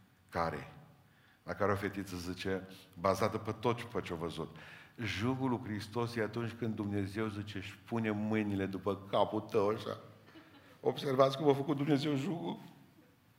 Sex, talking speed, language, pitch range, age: male, 150 wpm, Romanian, 105-125 Hz, 50-69